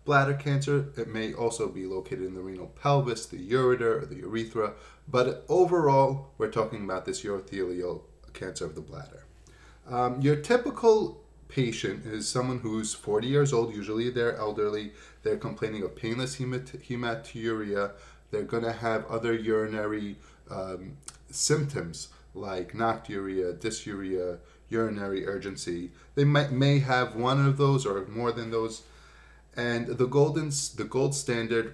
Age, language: 20-39, English